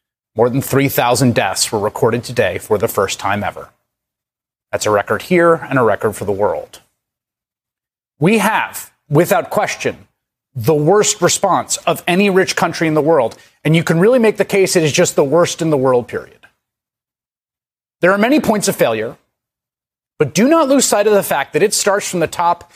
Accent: American